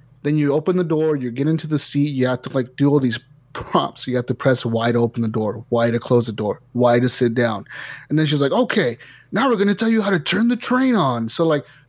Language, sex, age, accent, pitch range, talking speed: English, male, 30-49, American, 125-160 Hz, 280 wpm